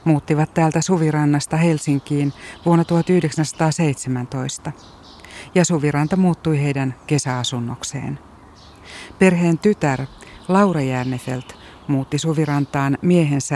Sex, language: female, Finnish